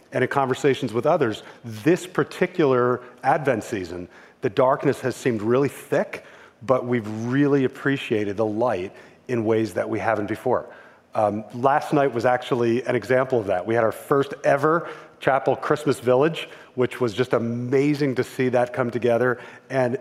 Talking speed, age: 160 wpm, 40-59